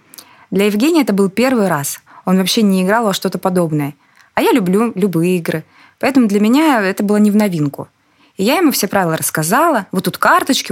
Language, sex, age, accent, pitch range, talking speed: Russian, female, 20-39, native, 170-215 Hz, 195 wpm